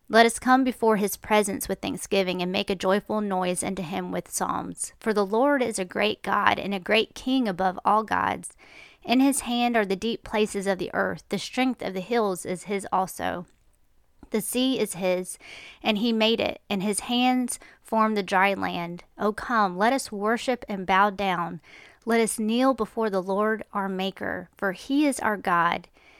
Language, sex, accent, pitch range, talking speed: English, female, American, 195-230 Hz, 195 wpm